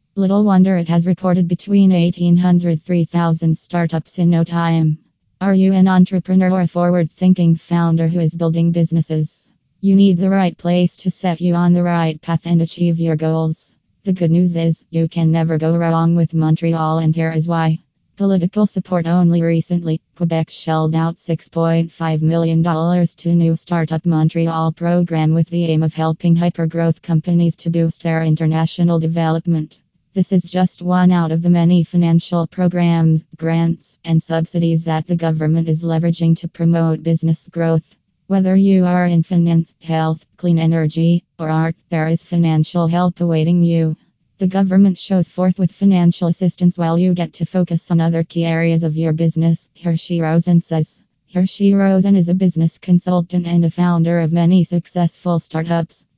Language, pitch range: English, 165-180 Hz